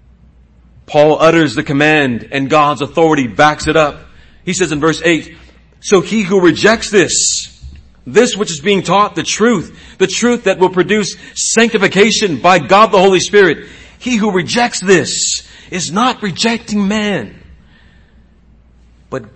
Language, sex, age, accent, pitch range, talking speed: English, male, 40-59, American, 145-210 Hz, 145 wpm